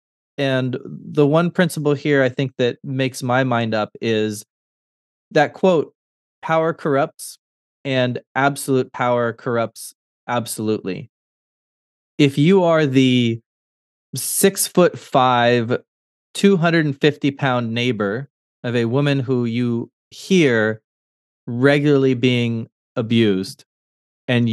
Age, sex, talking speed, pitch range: 20-39, male, 105 wpm, 115-145 Hz